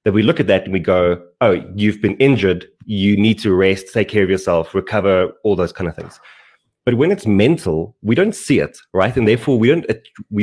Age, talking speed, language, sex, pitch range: 20-39, 230 wpm, English, male, 95-115 Hz